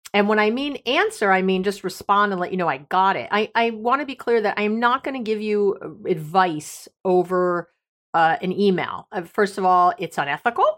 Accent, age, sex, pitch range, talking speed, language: American, 40-59, female, 165-215 Hz, 230 wpm, English